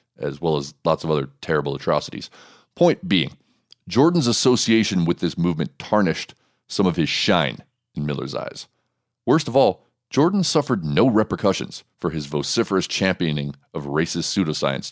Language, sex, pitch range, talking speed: English, male, 80-120 Hz, 150 wpm